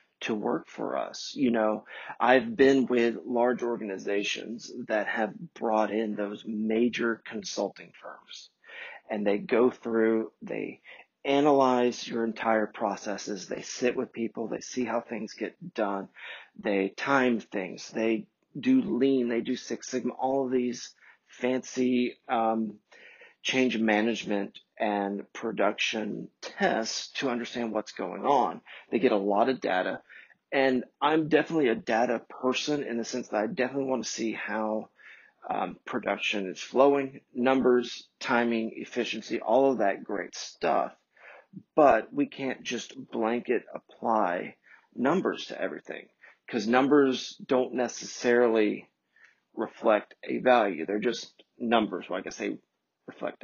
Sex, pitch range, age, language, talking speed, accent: male, 110-130 Hz, 40-59, English, 135 wpm, American